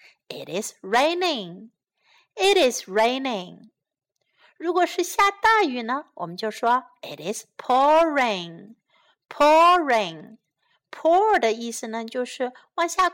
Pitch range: 215-330 Hz